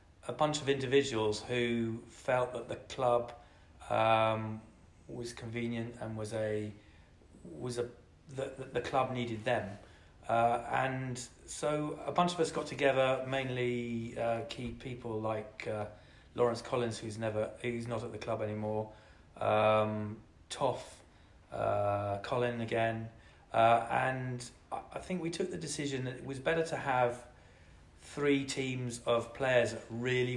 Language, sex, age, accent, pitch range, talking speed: English, male, 30-49, British, 110-125 Hz, 140 wpm